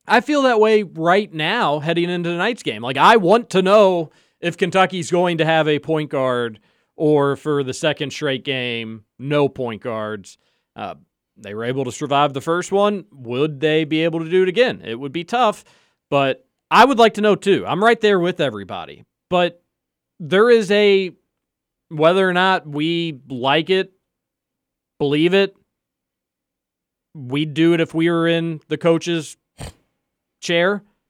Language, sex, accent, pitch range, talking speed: English, male, American, 140-185 Hz, 170 wpm